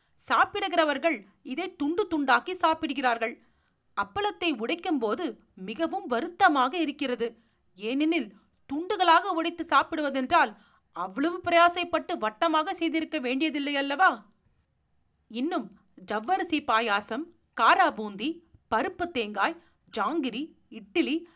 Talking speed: 80 wpm